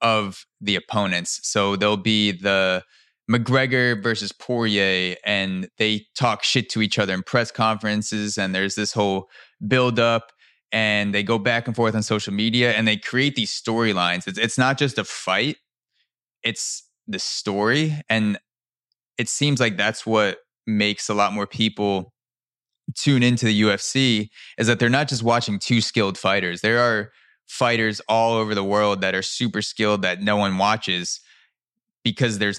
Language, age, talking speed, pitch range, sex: English, 20-39, 165 wpm, 100-120 Hz, male